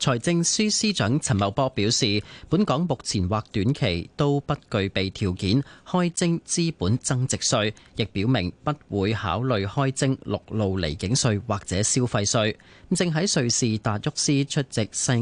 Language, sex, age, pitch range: Chinese, male, 30-49, 100-140 Hz